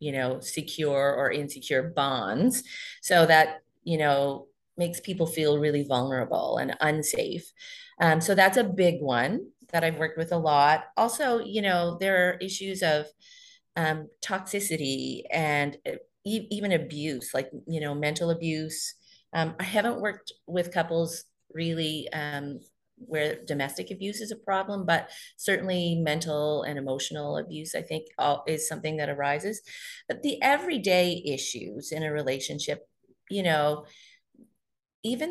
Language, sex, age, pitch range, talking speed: English, female, 30-49, 150-200 Hz, 140 wpm